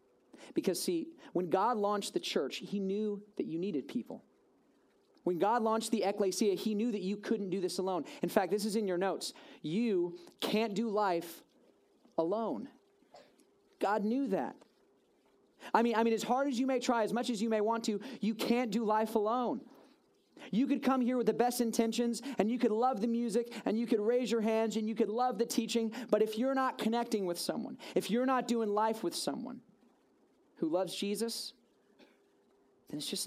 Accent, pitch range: American, 190-245 Hz